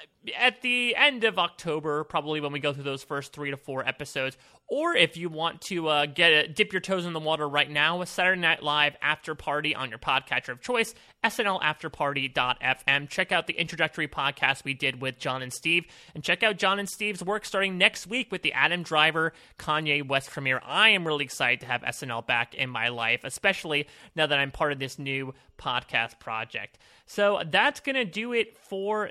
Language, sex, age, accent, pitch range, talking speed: English, male, 30-49, American, 140-190 Hz, 205 wpm